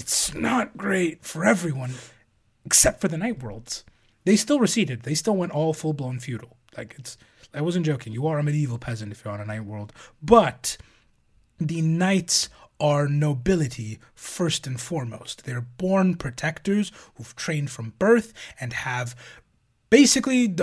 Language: English